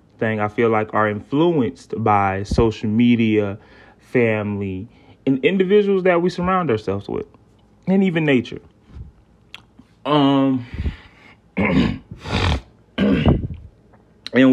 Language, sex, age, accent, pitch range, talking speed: English, male, 30-49, American, 110-140 Hz, 90 wpm